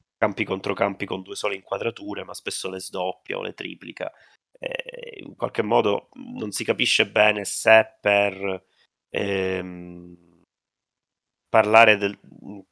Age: 30-49